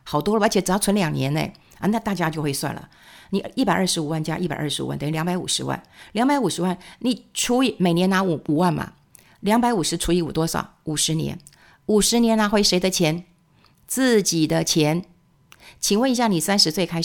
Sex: female